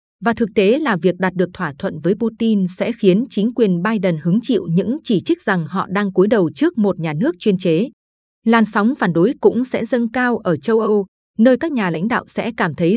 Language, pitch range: Vietnamese, 180-230 Hz